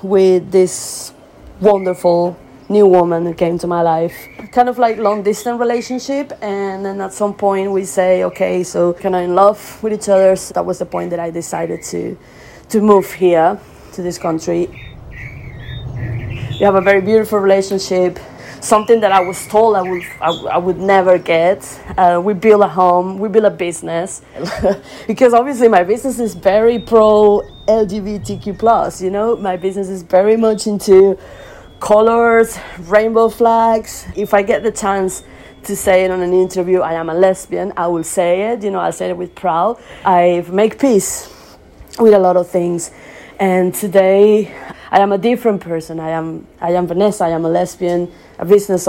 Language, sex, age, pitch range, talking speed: English, female, 30-49, 175-210 Hz, 180 wpm